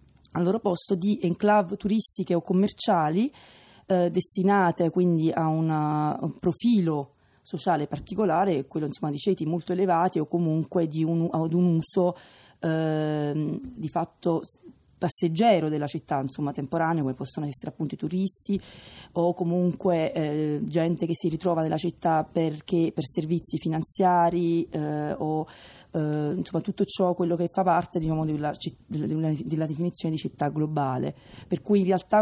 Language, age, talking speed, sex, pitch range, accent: Italian, 30-49, 150 wpm, female, 155-180 Hz, native